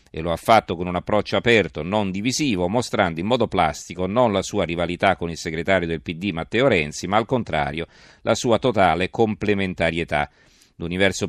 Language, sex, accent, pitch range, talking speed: Italian, male, native, 85-110 Hz, 175 wpm